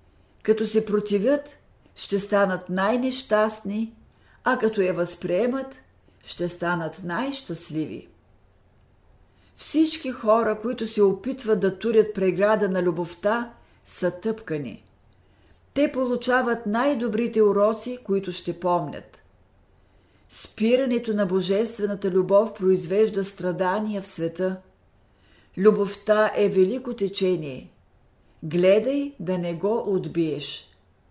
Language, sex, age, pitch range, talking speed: Bulgarian, female, 50-69, 165-220 Hz, 95 wpm